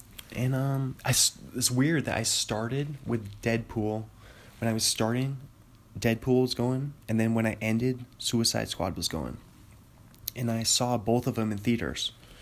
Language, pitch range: English, 110-130 Hz